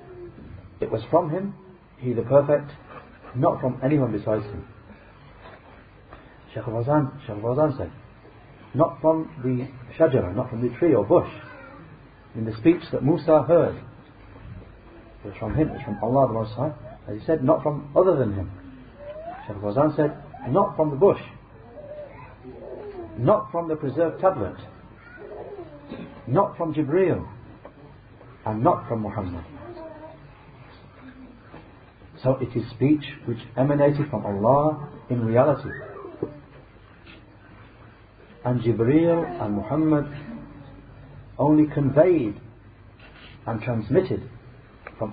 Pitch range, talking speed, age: 110-150 Hz, 115 wpm, 60-79